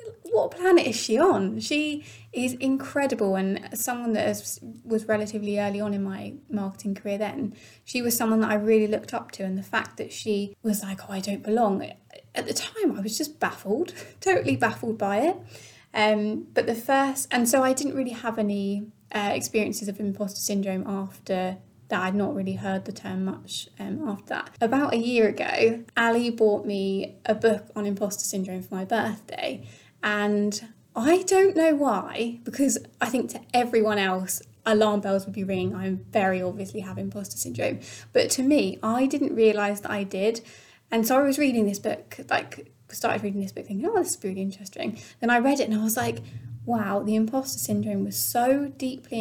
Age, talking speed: 20-39, 195 wpm